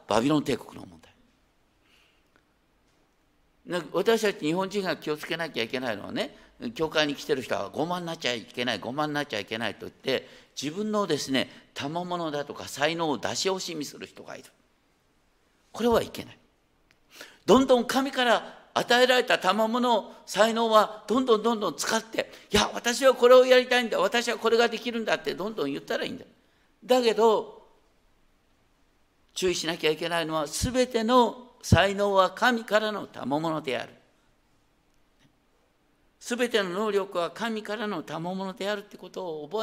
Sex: male